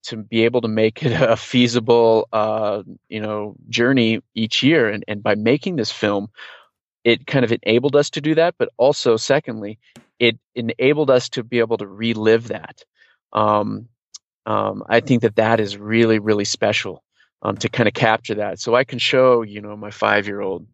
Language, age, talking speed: English, 30-49, 185 wpm